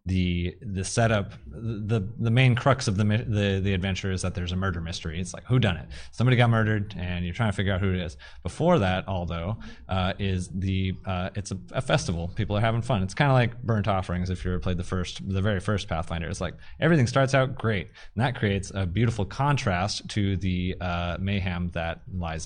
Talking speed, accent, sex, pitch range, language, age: 225 wpm, American, male, 90-110 Hz, English, 30-49